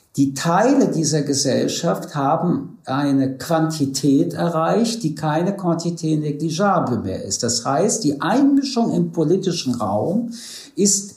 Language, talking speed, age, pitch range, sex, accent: German, 120 wpm, 60-79, 135-190 Hz, male, German